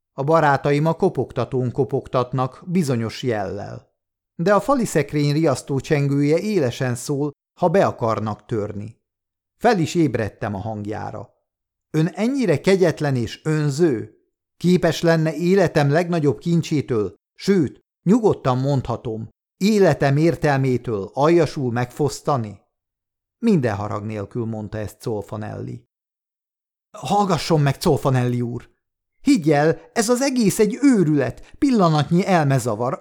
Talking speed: 105 wpm